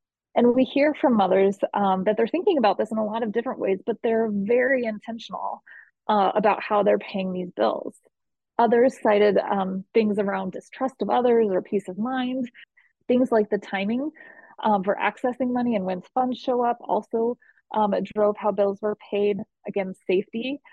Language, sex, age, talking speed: English, female, 20-39, 180 wpm